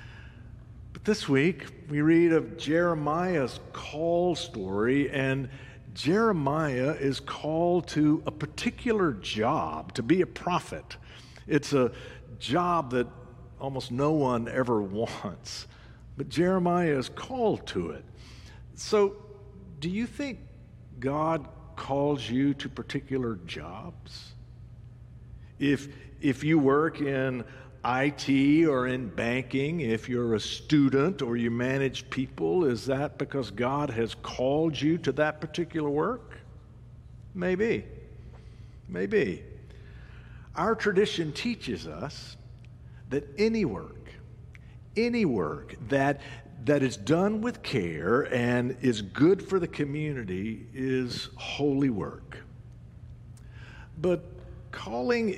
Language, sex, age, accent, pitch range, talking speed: English, male, 60-79, American, 120-155 Hz, 110 wpm